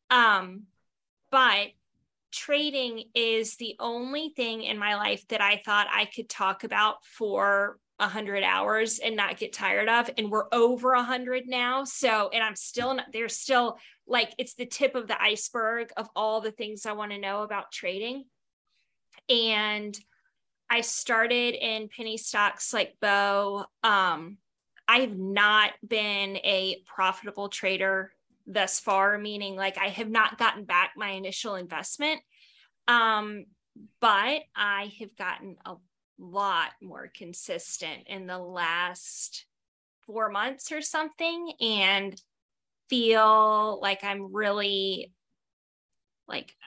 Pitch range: 200-240 Hz